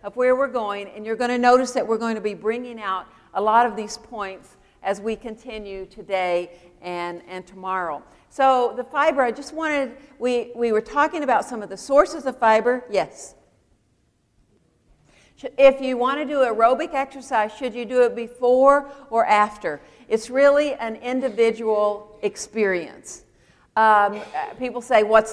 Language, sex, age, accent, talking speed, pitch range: English, female, 60-79, American, 165 wpm, 205-255 Hz